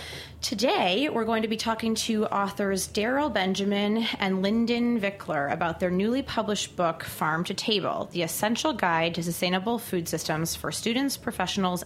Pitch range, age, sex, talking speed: 170-220 Hz, 30-49, female, 155 wpm